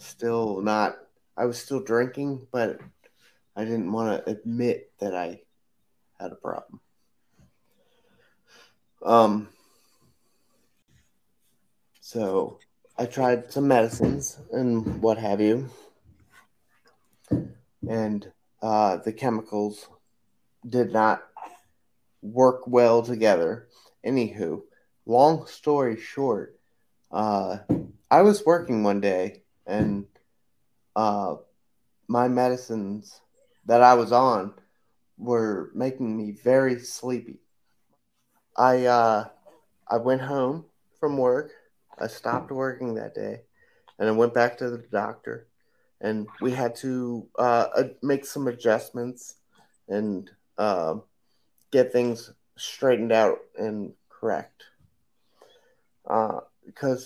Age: 30-49